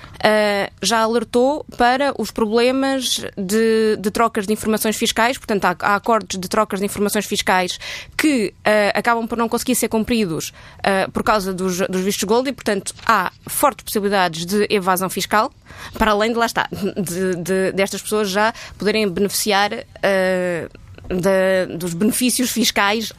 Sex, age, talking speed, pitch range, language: female, 20-39, 155 wpm, 195-235 Hz, Portuguese